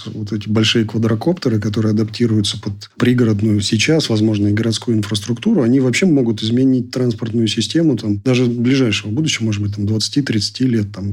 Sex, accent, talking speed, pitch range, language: male, native, 160 wpm, 110-125 Hz, Russian